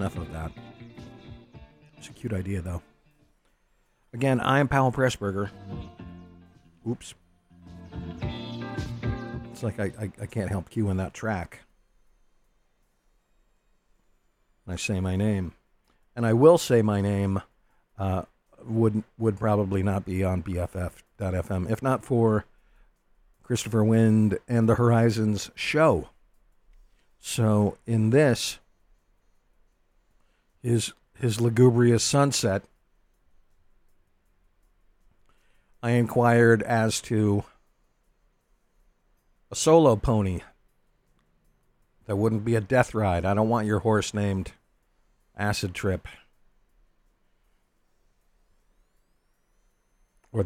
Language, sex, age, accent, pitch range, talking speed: English, male, 50-69, American, 90-115 Hz, 95 wpm